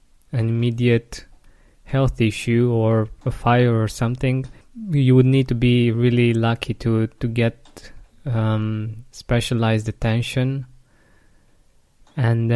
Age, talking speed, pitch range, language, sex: 20-39, 110 wpm, 115-130 Hz, English, male